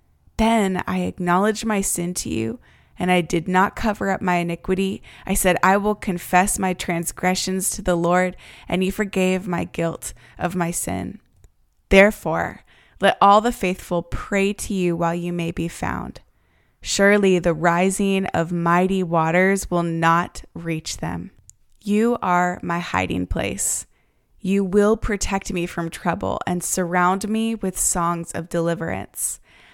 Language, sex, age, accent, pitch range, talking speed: English, female, 20-39, American, 170-200 Hz, 150 wpm